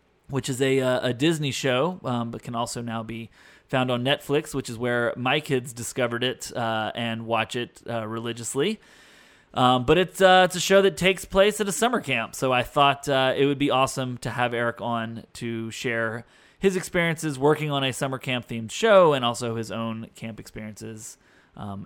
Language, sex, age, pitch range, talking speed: English, male, 30-49, 125-185 Hz, 200 wpm